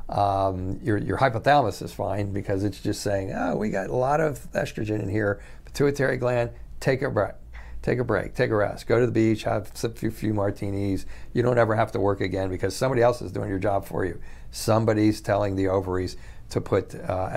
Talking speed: 220 wpm